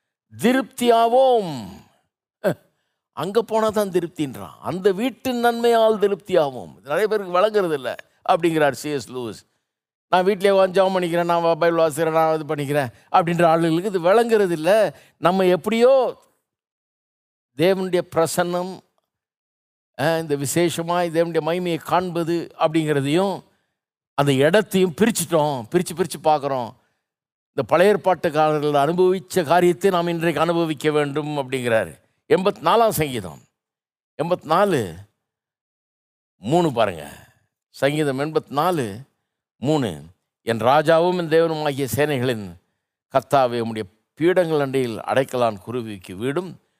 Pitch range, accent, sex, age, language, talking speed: 135-185 Hz, native, male, 50-69, Tamil, 105 wpm